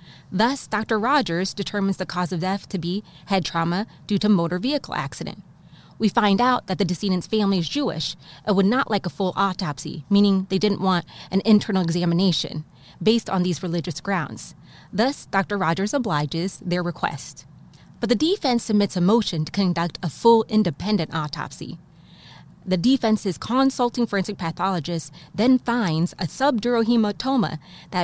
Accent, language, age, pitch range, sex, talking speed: American, English, 20-39, 170-220 Hz, female, 160 wpm